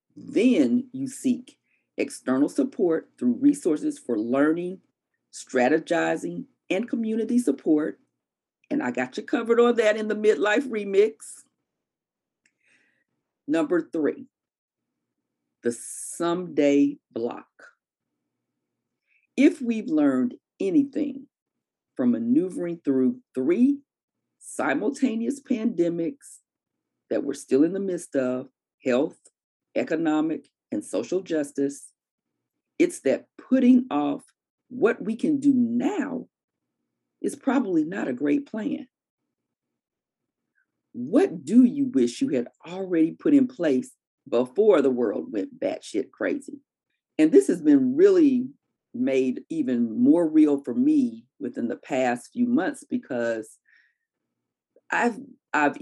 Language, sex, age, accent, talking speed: English, female, 40-59, American, 110 wpm